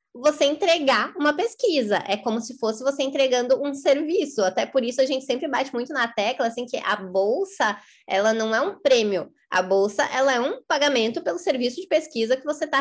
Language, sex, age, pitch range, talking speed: Portuguese, female, 20-39, 225-280 Hz, 205 wpm